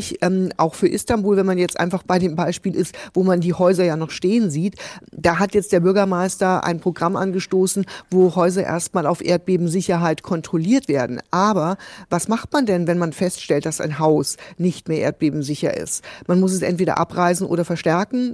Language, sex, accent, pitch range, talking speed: German, female, German, 175-200 Hz, 185 wpm